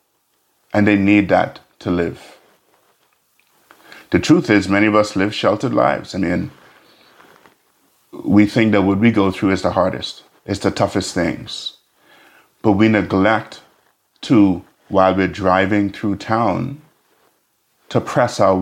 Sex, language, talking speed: male, English, 140 wpm